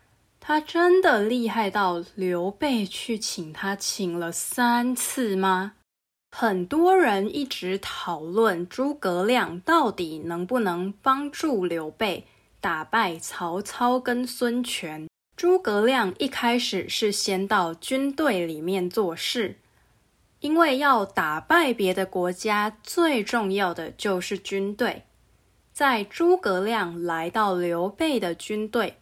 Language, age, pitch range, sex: English, 20-39, 180-255 Hz, female